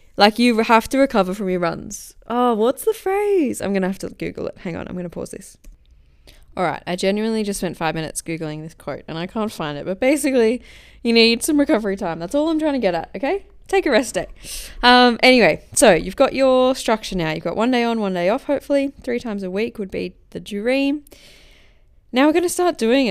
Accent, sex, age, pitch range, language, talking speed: Australian, female, 10-29, 180-250 Hz, English, 230 wpm